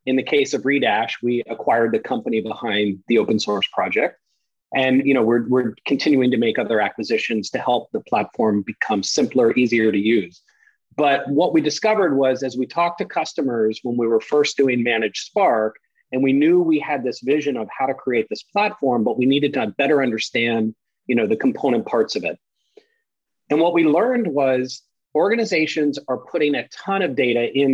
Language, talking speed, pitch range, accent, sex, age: English, 185 wpm, 120-160 Hz, American, male, 30-49